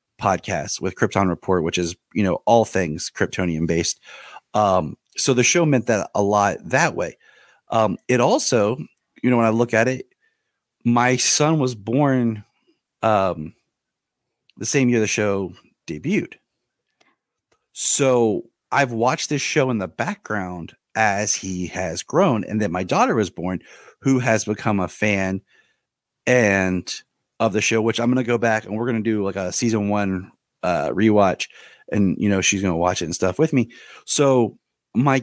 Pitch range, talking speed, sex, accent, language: 95-125 Hz, 170 wpm, male, American, English